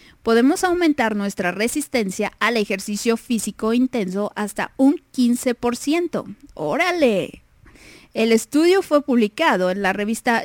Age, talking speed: 20-39, 110 wpm